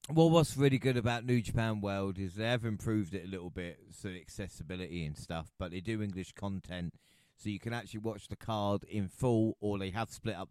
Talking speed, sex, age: 230 wpm, male, 30-49